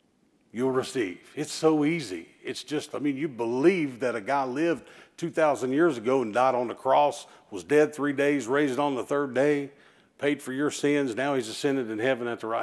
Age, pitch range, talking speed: 50-69, 135-175 Hz, 210 wpm